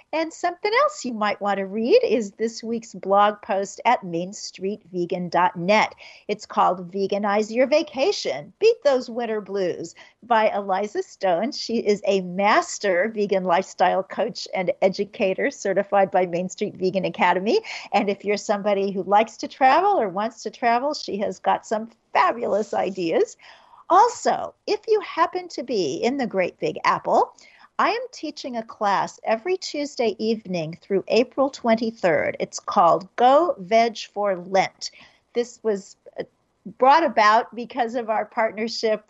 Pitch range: 200-265 Hz